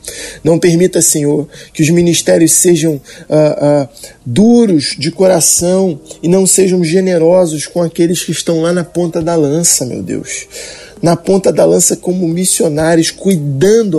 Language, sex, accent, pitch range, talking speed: Portuguese, male, Brazilian, 160-195 Hz, 145 wpm